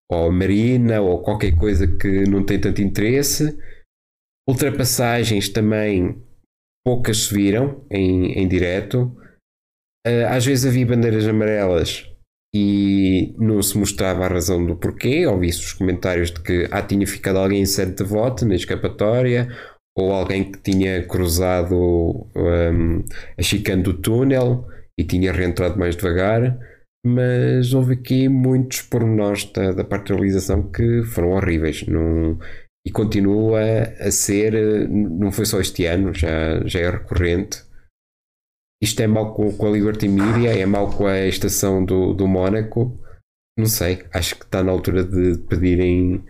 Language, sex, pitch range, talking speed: Portuguese, male, 90-110 Hz, 150 wpm